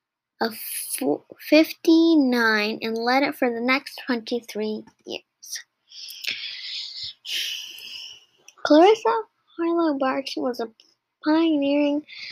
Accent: American